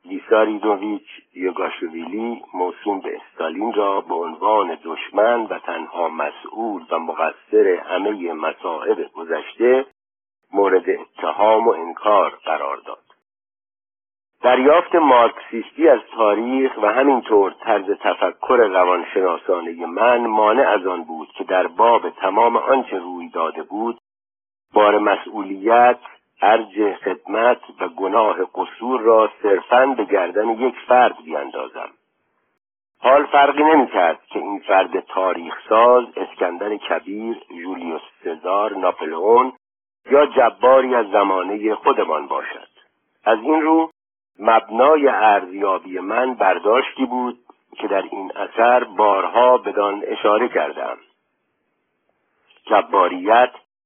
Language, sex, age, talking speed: Persian, male, 50-69, 105 wpm